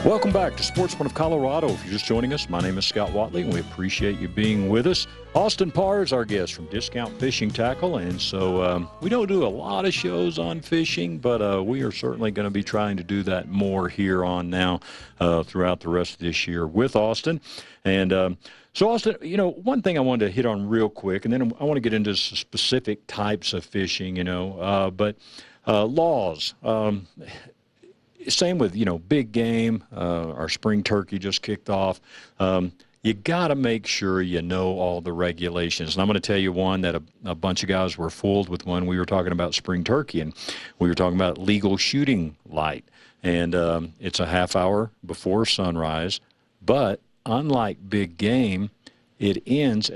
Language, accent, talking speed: English, American, 205 wpm